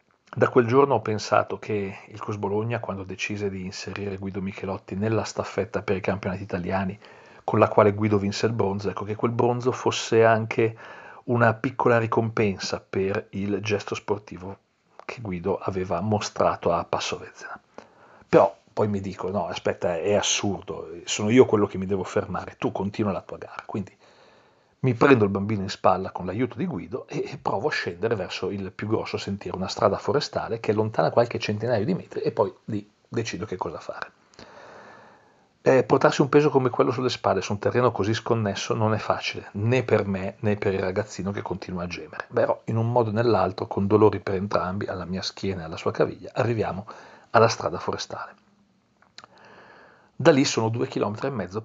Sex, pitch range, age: male, 95-115 Hz, 40-59